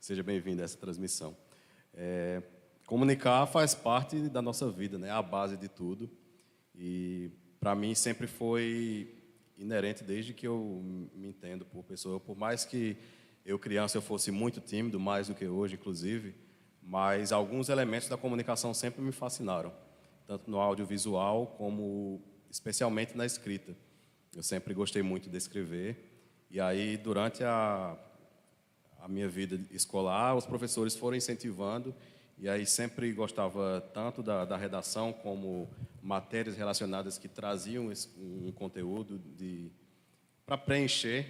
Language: Portuguese